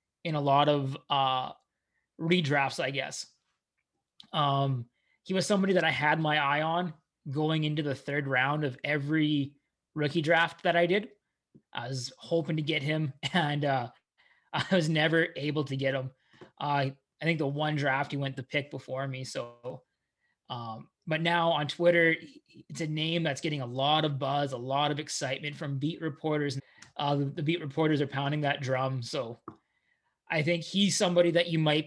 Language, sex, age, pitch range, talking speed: English, male, 20-39, 135-160 Hz, 180 wpm